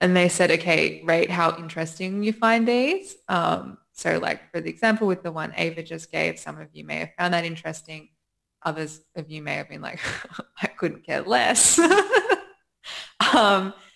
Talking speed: 180 wpm